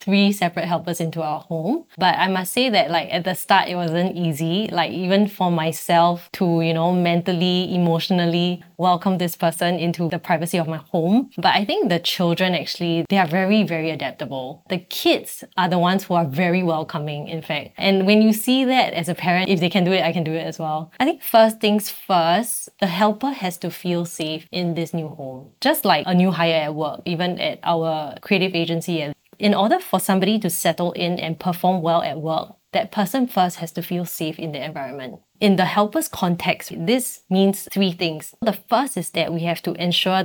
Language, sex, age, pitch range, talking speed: English, female, 20-39, 165-190 Hz, 215 wpm